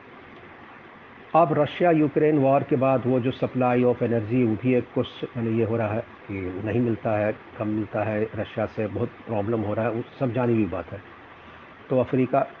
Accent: native